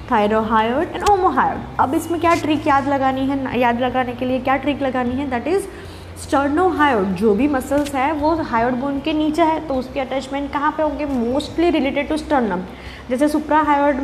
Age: 20-39